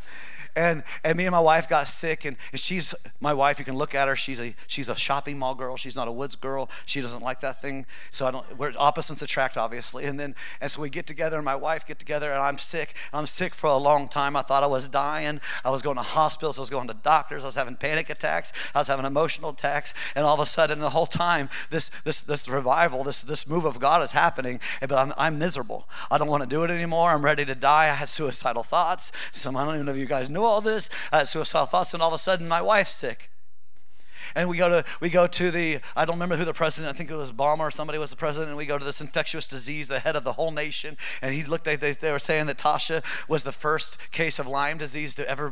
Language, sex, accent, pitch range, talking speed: English, male, American, 140-160 Hz, 270 wpm